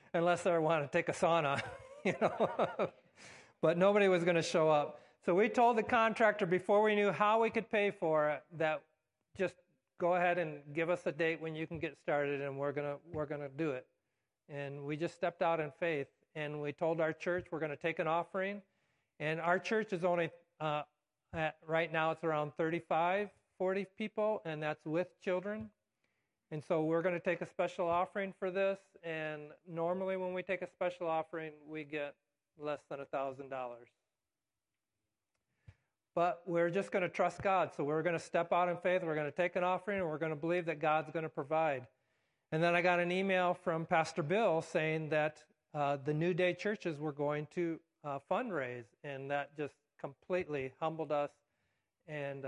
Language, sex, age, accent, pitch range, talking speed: English, male, 50-69, American, 145-180 Hz, 200 wpm